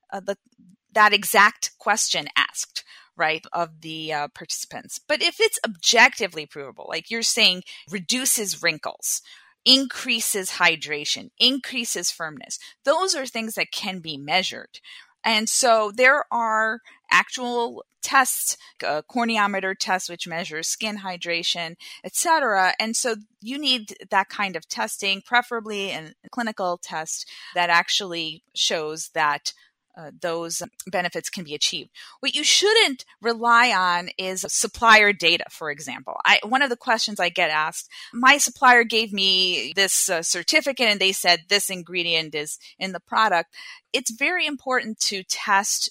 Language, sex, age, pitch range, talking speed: English, female, 30-49, 175-235 Hz, 140 wpm